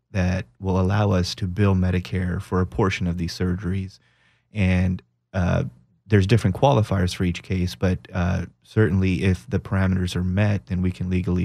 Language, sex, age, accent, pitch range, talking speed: English, male, 30-49, American, 90-100 Hz, 175 wpm